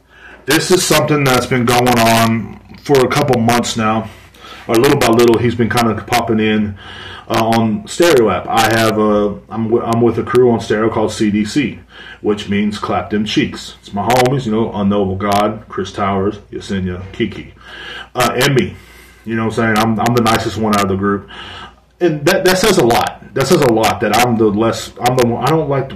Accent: American